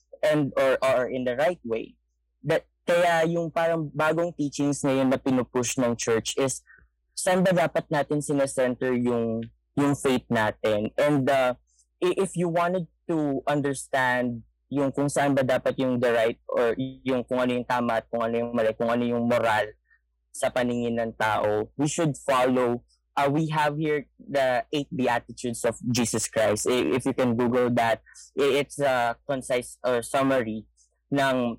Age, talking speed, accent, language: 20-39, 165 wpm, Filipino, English